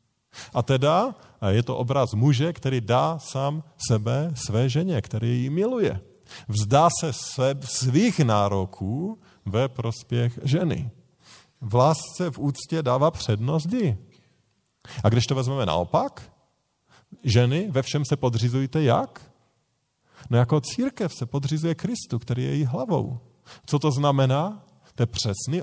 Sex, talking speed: male, 130 wpm